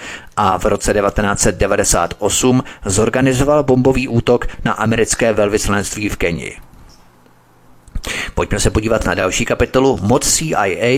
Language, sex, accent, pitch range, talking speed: Czech, male, native, 100-125 Hz, 110 wpm